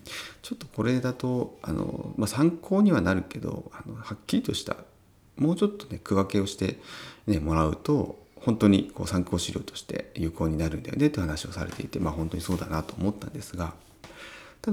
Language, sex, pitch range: Japanese, male, 80-110 Hz